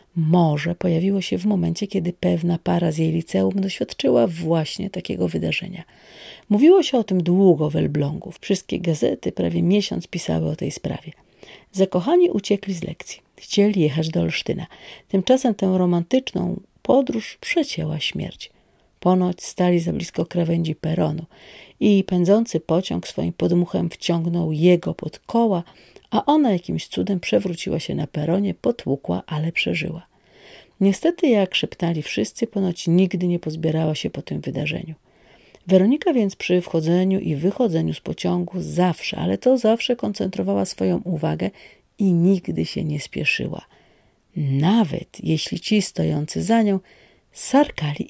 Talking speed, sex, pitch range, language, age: 135 wpm, female, 160-195 Hz, Polish, 40-59